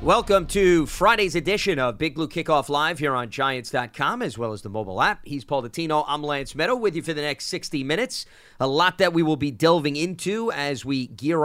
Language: English